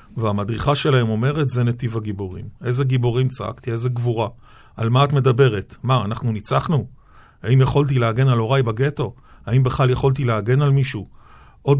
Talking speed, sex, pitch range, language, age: 160 wpm, male, 110-135 Hz, Hebrew, 40-59